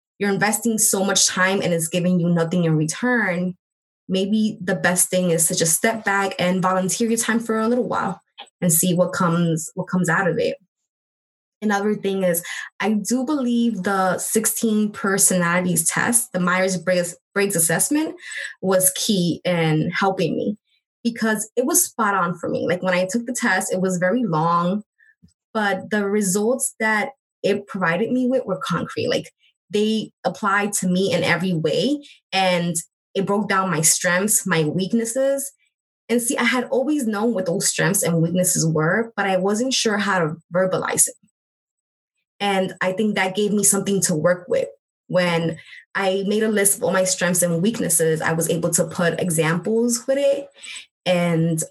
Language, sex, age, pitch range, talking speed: English, female, 20-39, 175-220 Hz, 175 wpm